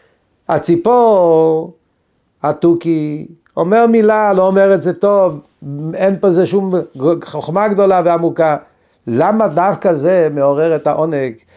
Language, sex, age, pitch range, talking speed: Hebrew, male, 60-79, 140-180 Hz, 115 wpm